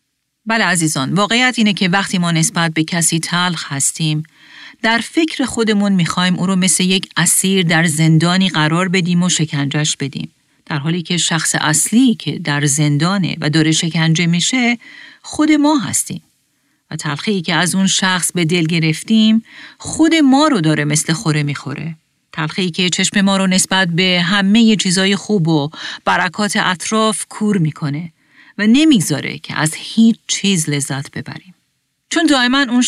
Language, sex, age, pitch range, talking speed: Persian, female, 40-59, 155-210 Hz, 155 wpm